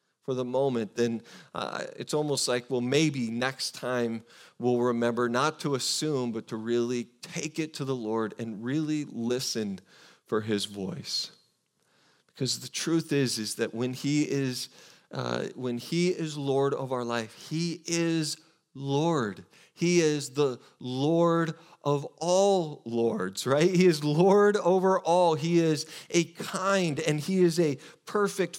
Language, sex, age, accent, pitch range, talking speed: English, male, 40-59, American, 135-185 Hz, 155 wpm